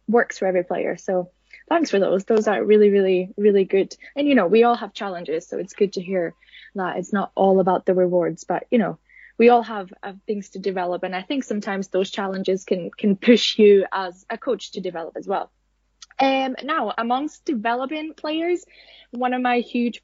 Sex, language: female, English